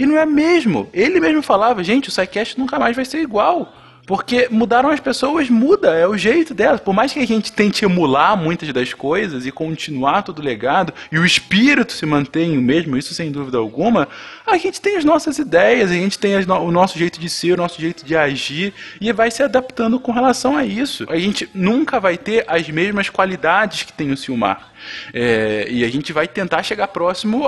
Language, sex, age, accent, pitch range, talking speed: Portuguese, male, 20-39, Brazilian, 170-245 Hz, 210 wpm